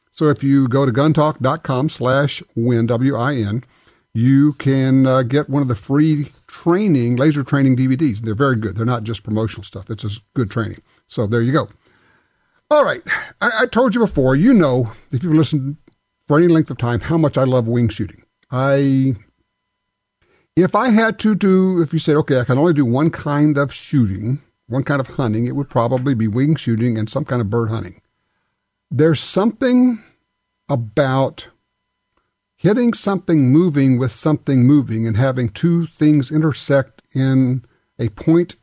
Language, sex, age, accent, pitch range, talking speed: English, male, 50-69, American, 120-155 Hz, 170 wpm